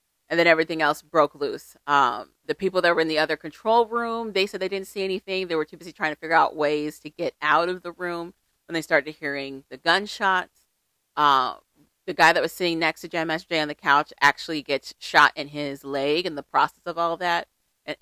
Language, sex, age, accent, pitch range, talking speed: English, female, 30-49, American, 145-180 Hz, 235 wpm